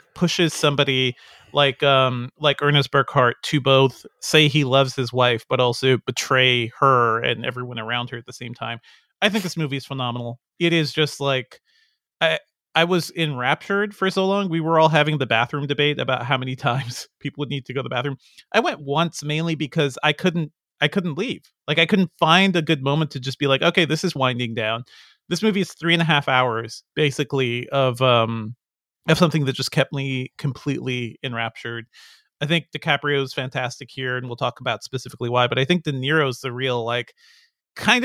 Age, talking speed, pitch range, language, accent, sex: 30-49, 200 wpm, 125-155 Hz, English, American, male